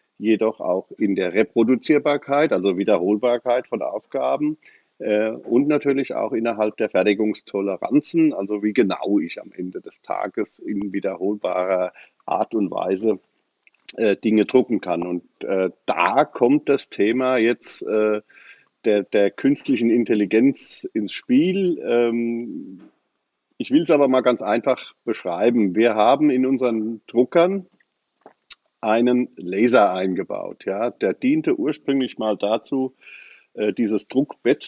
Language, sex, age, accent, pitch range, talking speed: German, male, 50-69, German, 105-145 Hz, 125 wpm